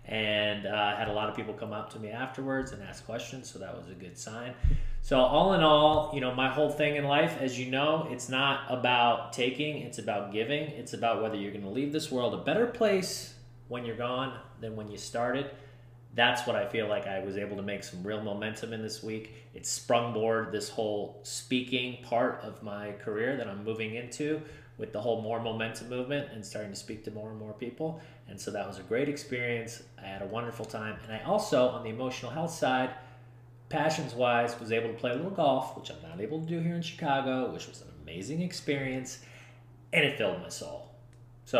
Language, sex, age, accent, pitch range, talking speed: English, male, 30-49, American, 110-135 Hz, 220 wpm